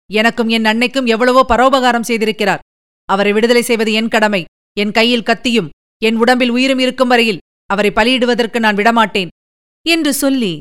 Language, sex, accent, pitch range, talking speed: Tamil, female, native, 205-265 Hz, 140 wpm